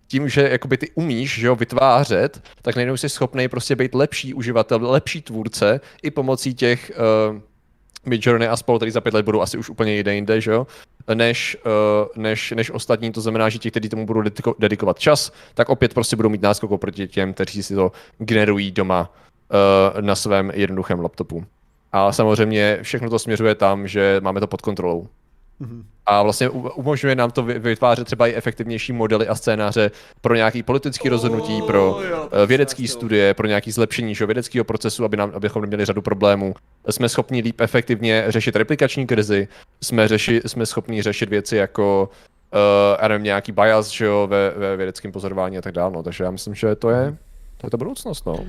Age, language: 20-39, Czech